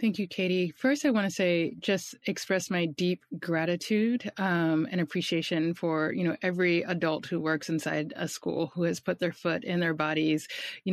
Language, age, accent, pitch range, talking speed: English, 30-49, American, 170-200 Hz, 190 wpm